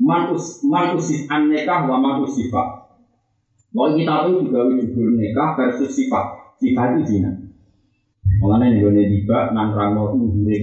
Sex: male